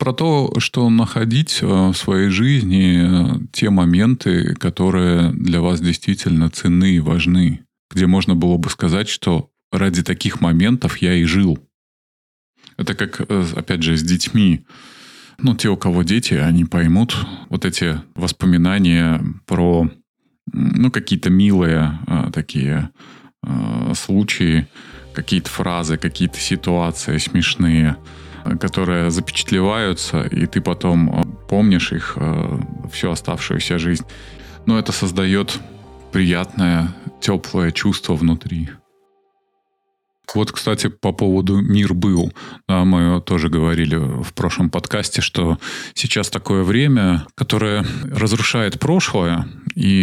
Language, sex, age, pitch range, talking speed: Russian, male, 20-39, 85-105 Hz, 110 wpm